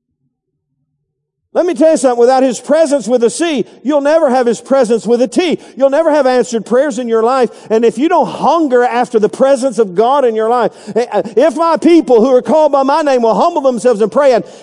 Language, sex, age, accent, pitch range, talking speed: English, male, 50-69, American, 225-295 Hz, 225 wpm